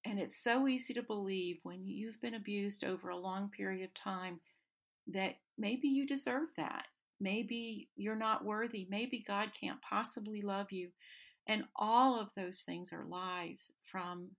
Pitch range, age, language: 180-220 Hz, 50-69, English